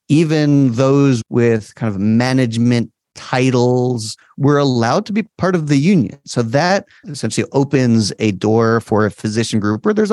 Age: 30-49